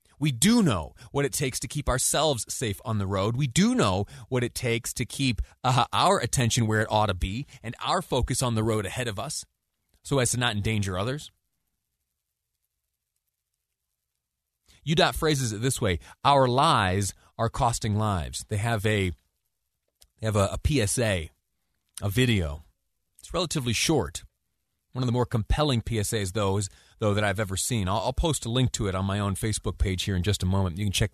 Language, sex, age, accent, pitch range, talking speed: English, male, 30-49, American, 90-125 Hz, 195 wpm